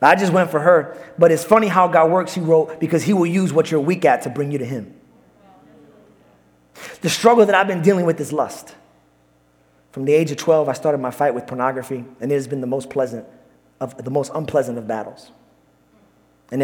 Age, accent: 30-49, American